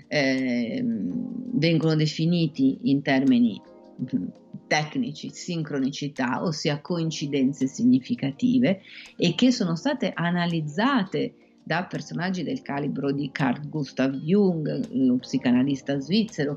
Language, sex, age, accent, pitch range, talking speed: Italian, female, 40-59, native, 150-220 Hz, 95 wpm